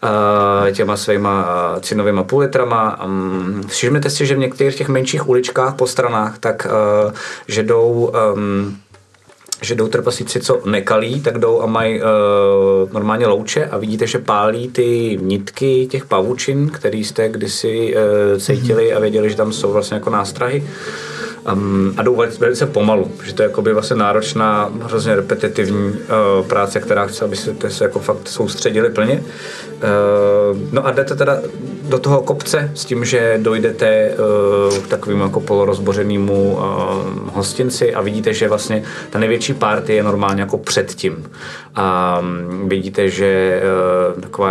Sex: male